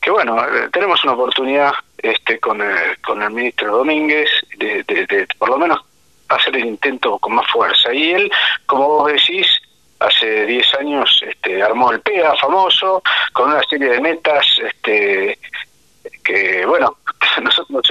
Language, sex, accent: Spanish, male, Argentinian